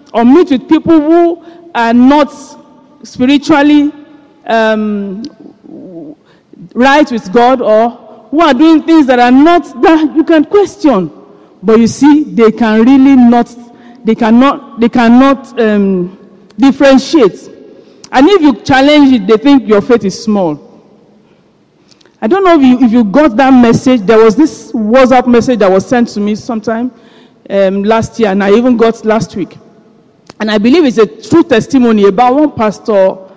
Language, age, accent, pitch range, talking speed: English, 50-69, Nigerian, 215-270 Hz, 160 wpm